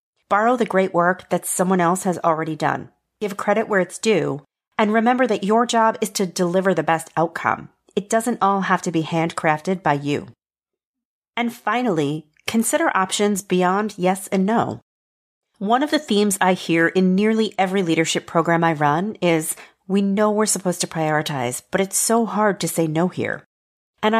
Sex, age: female, 40-59